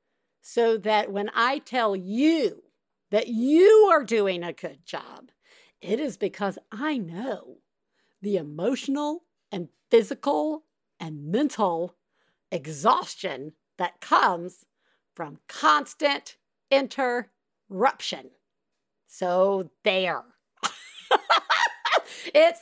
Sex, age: female, 50-69